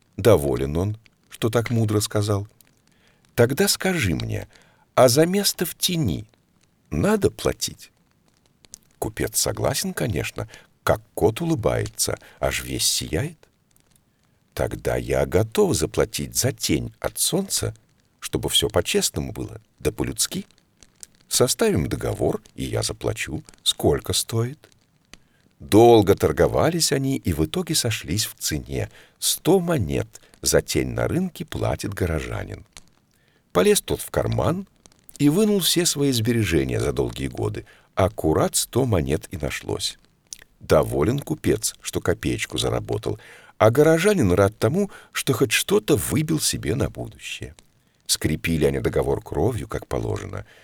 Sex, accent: male, native